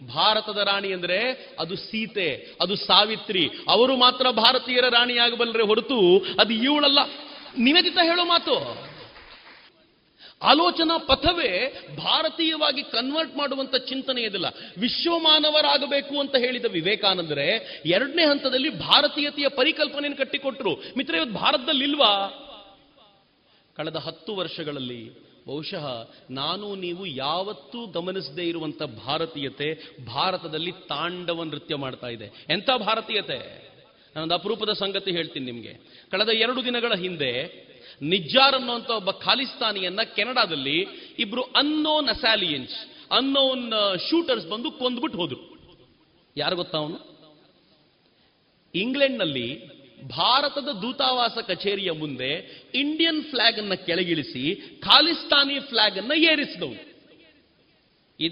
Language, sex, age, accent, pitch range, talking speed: Kannada, male, 30-49, native, 170-280 Hz, 95 wpm